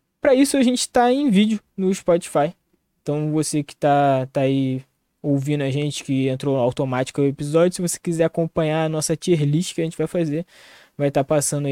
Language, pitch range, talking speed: Portuguese, 135-160 Hz, 205 wpm